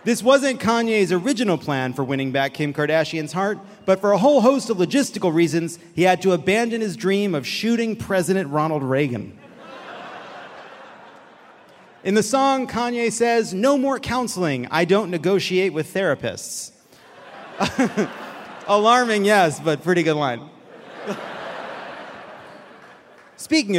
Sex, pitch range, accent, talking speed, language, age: male, 170-235 Hz, American, 125 wpm, English, 30-49